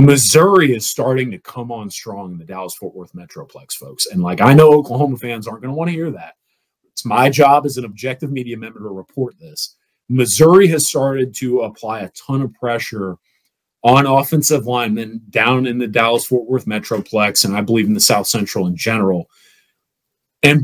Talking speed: 190 wpm